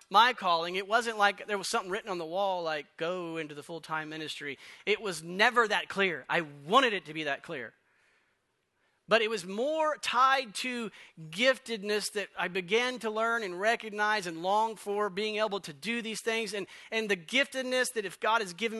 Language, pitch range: English, 205-265 Hz